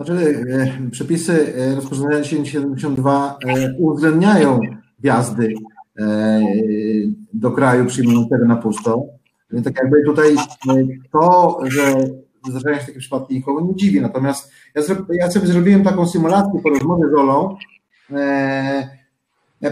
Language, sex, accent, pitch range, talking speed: Polish, male, native, 135-170 Hz, 105 wpm